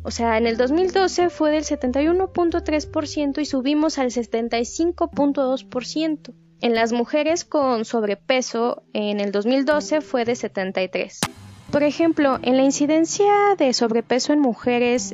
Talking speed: 125 wpm